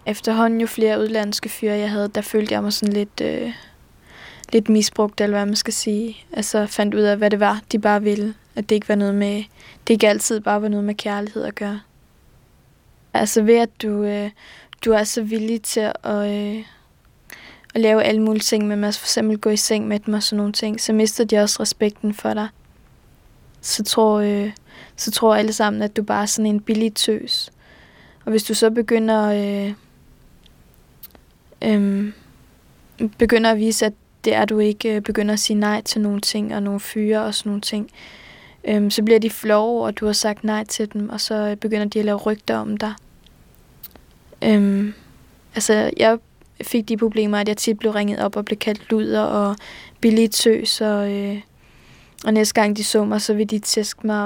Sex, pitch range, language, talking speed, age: female, 210-220 Hz, Danish, 200 wpm, 20-39